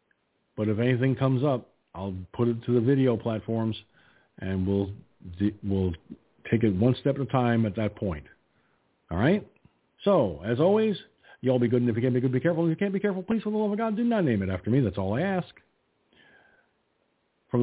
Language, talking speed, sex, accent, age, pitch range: English, 220 wpm, male, American, 50-69, 100-140 Hz